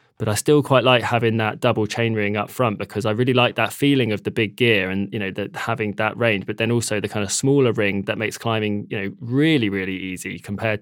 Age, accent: 20-39, British